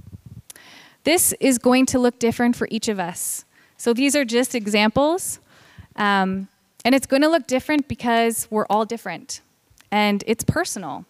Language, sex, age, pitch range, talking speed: English, female, 20-39, 200-245 Hz, 150 wpm